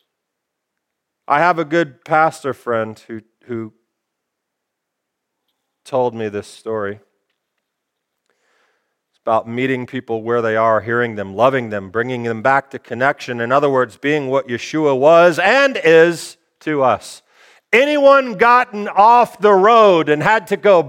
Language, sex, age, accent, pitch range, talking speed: English, male, 40-59, American, 140-200 Hz, 140 wpm